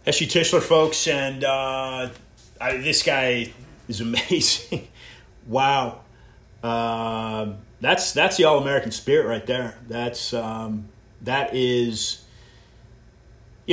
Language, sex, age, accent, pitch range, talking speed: English, male, 30-49, American, 110-130 Hz, 110 wpm